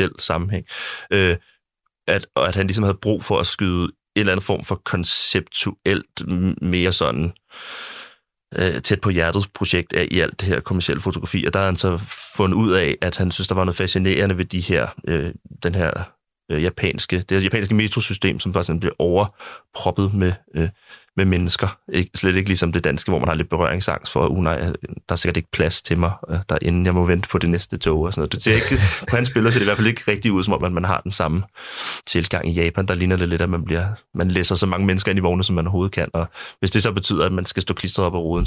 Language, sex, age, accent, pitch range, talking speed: Danish, male, 30-49, native, 85-100 Hz, 245 wpm